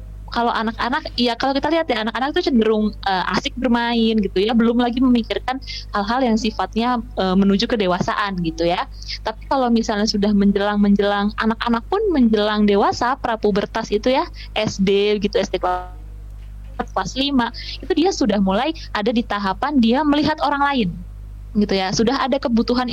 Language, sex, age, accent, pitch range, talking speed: Indonesian, female, 20-39, native, 200-250 Hz, 155 wpm